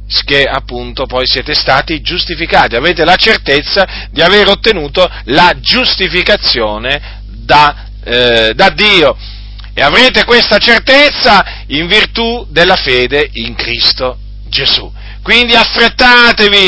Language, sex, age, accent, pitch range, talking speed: Italian, male, 40-59, native, 135-195 Hz, 110 wpm